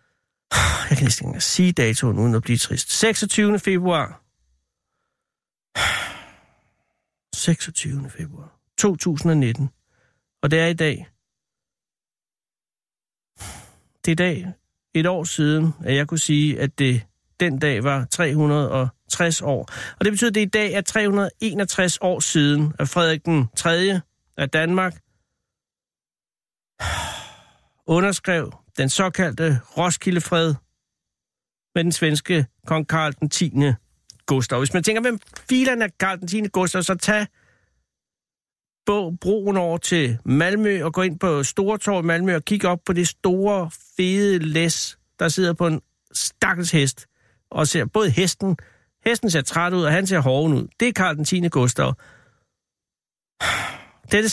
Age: 60-79